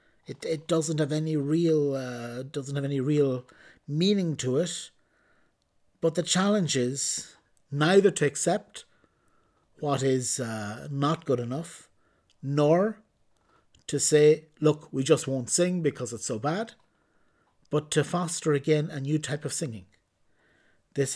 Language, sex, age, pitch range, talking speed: English, male, 50-69, 130-160 Hz, 140 wpm